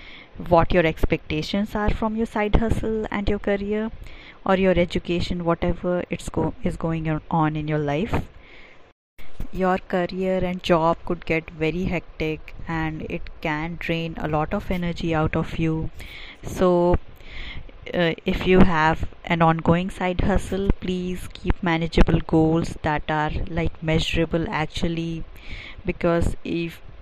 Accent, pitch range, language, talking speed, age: Indian, 155-180 Hz, English, 140 wpm, 20-39